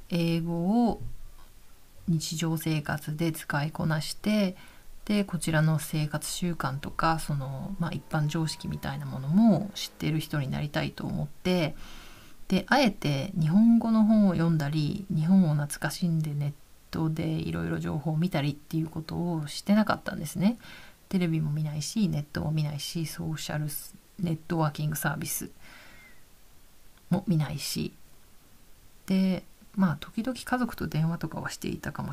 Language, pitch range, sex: Japanese, 155-200 Hz, female